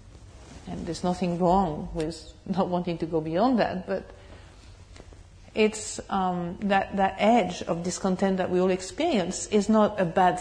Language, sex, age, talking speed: English, female, 50-69, 155 wpm